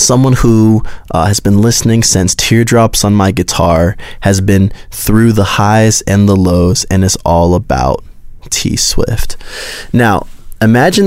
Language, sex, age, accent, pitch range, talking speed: English, male, 20-39, American, 95-120 Hz, 140 wpm